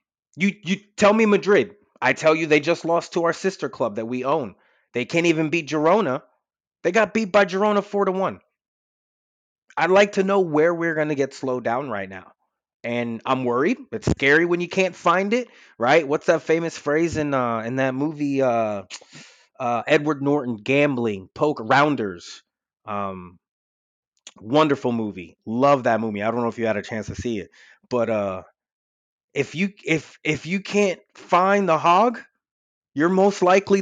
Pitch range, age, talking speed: 120-190 Hz, 30-49, 180 wpm